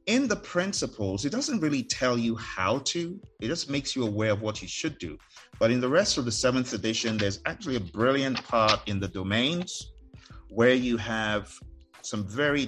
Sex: male